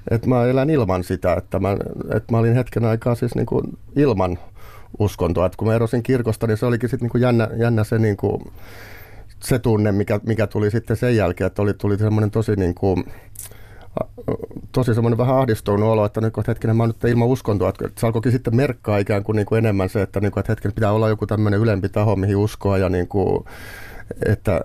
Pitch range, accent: 100-115 Hz, native